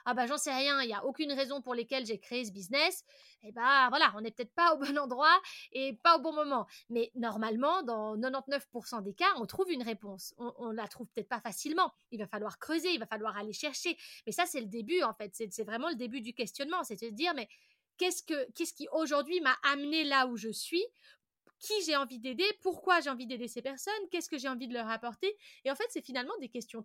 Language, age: French, 20-39